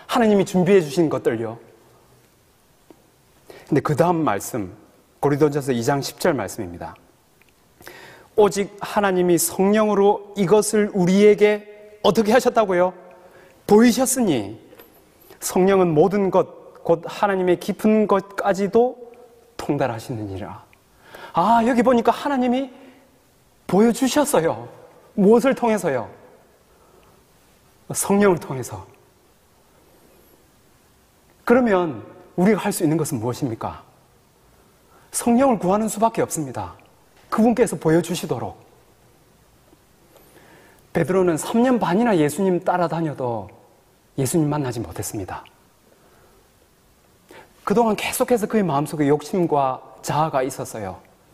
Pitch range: 145-210 Hz